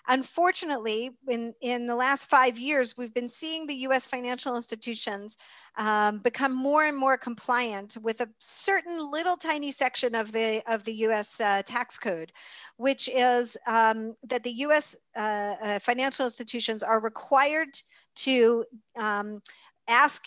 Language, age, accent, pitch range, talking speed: English, 50-69, American, 225-280 Hz, 140 wpm